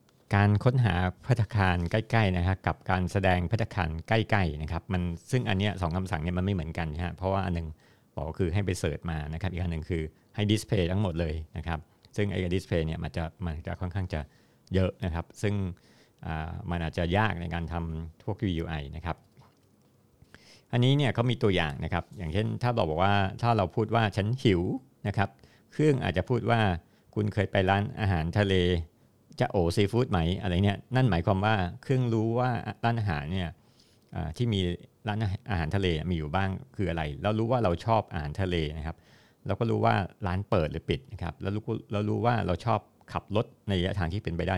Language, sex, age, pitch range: Thai, male, 60-79, 85-110 Hz